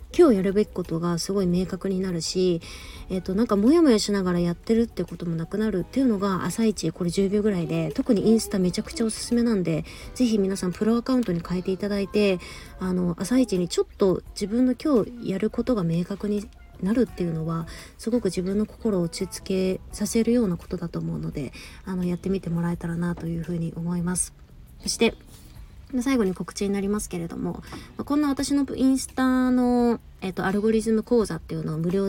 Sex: female